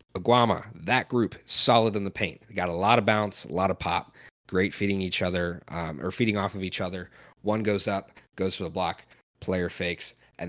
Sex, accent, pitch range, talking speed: male, American, 90-110 Hz, 210 wpm